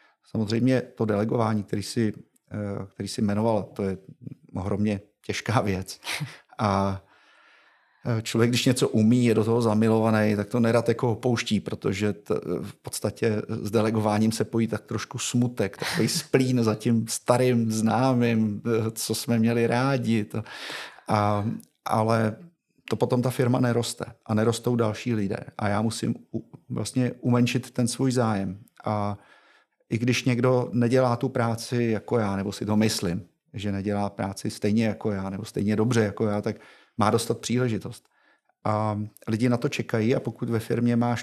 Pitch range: 110-120 Hz